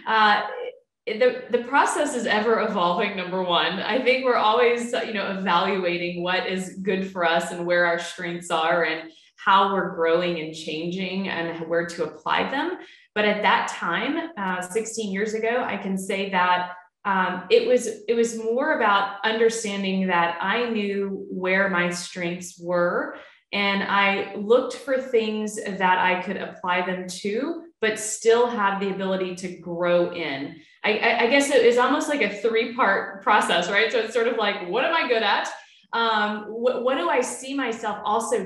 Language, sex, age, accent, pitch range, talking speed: English, female, 20-39, American, 185-250 Hz, 175 wpm